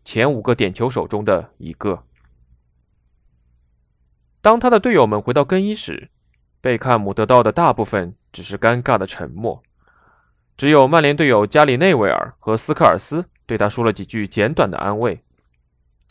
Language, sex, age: Chinese, male, 20-39